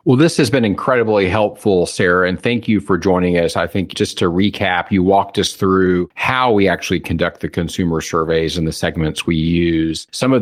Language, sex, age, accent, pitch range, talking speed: English, male, 40-59, American, 85-110 Hz, 205 wpm